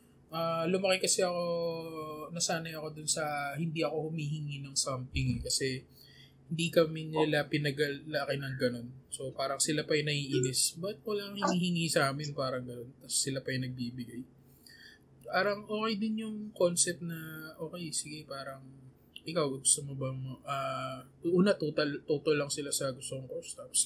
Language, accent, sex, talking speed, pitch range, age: Filipino, native, male, 155 wpm, 135-175 Hz, 20-39